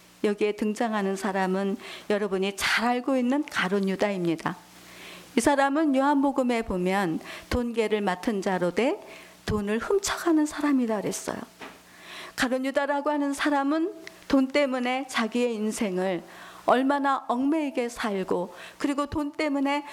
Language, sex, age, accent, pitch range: Korean, female, 50-69, native, 205-285 Hz